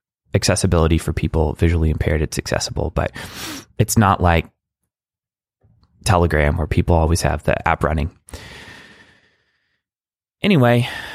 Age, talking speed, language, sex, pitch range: 20-39, 110 wpm, English, male, 85-120 Hz